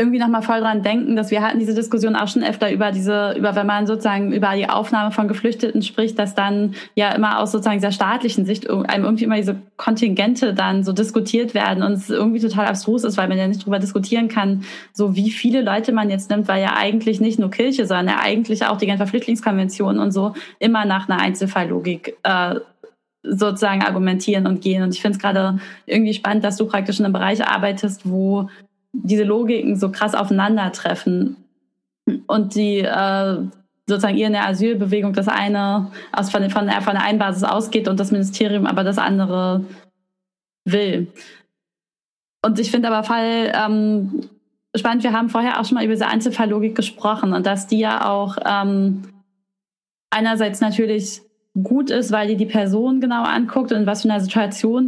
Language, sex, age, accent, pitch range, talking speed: German, female, 20-39, German, 200-225 Hz, 185 wpm